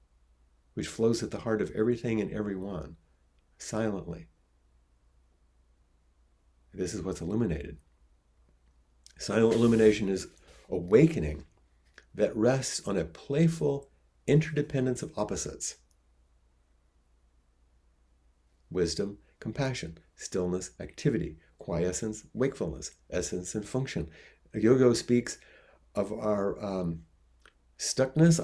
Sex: male